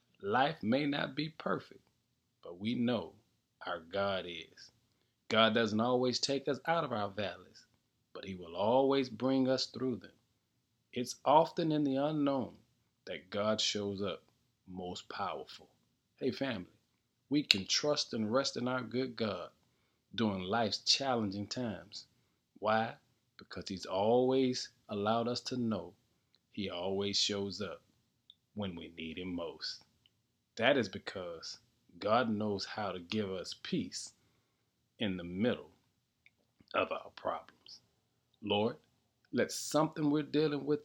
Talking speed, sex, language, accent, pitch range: 135 wpm, male, English, American, 100-130 Hz